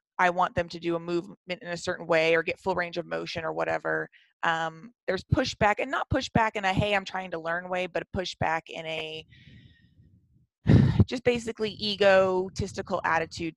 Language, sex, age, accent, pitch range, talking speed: English, female, 30-49, American, 165-200 Hz, 185 wpm